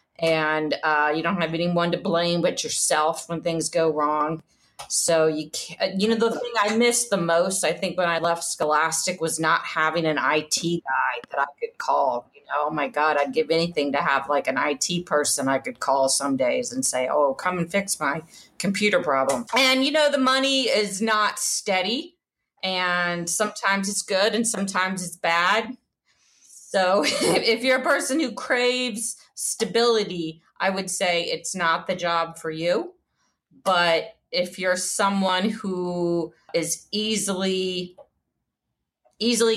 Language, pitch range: English, 160-200 Hz